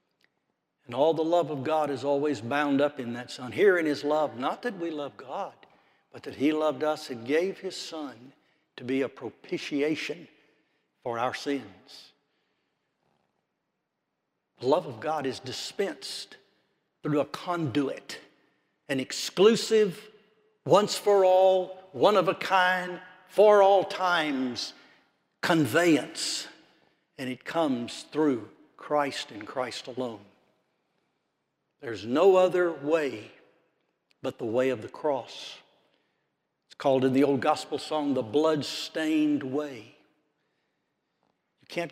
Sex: male